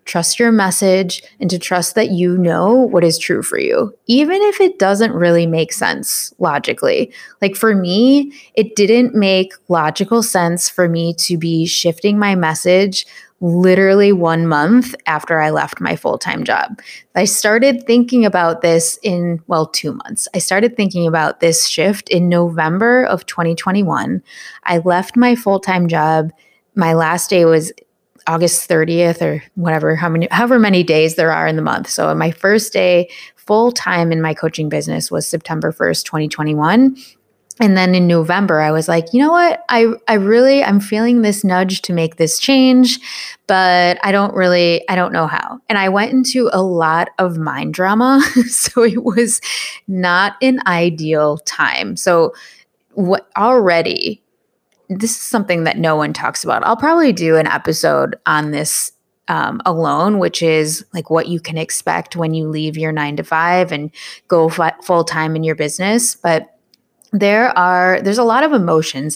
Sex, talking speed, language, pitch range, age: female, 170 wpm, English, 165-225 Hz, 20-39